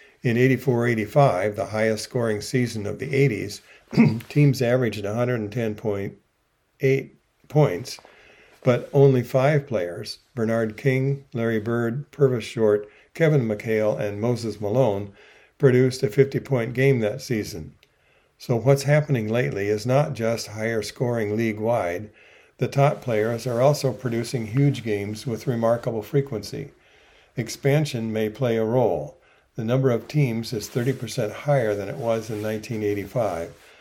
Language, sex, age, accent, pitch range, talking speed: English, male, 50-69, American, 105-130 Hz, 130 wpm